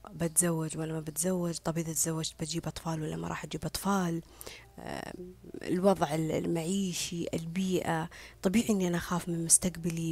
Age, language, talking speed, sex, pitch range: 20-39, Arabic, 135 wpm, female, 165-190 Hz